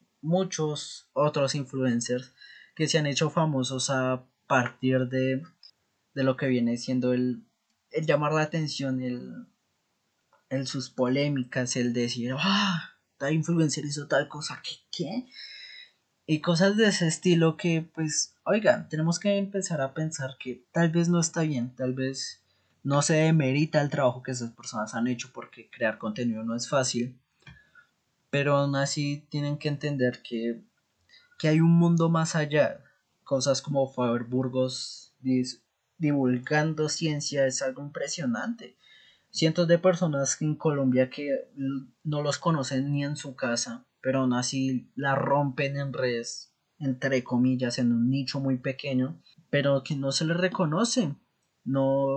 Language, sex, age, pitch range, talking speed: Spanish, male, 20-39, 130-155 Hz, 150 wpm